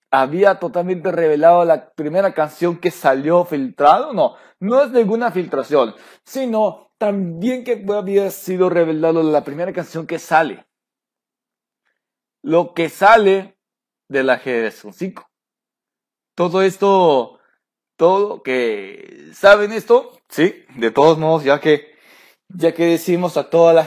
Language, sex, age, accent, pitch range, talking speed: Spanish, male, 40-59, Mexican, 155-205 Hz, 120 wpm